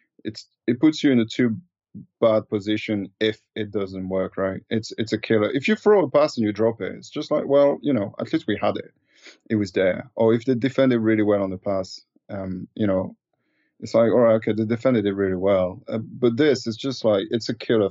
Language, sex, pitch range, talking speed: English, male, 95-115 Hz, 240 wpm